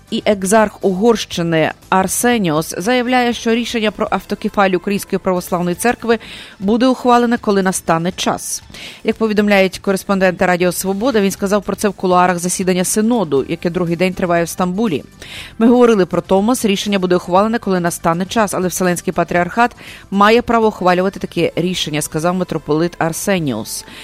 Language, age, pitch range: English, 30-49, 180-220 Hz